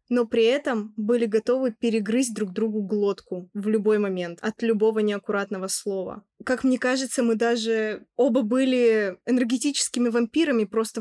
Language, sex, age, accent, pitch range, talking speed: Russian, female, 20-39, native, 205-250 Hz, 140 wpm